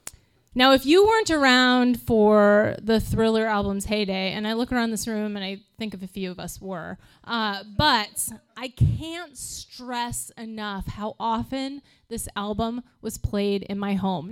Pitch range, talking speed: 200-255 Hz, 170 wpm